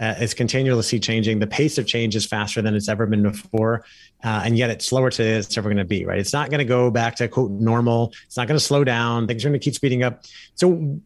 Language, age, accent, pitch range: English, 30-49, American, 115-140 Hz